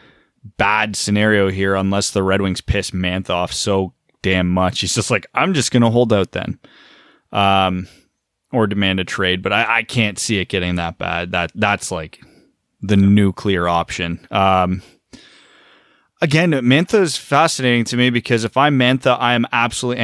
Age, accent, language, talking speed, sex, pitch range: 20-39, American, English, 170 wpm, male, 95-115 Hz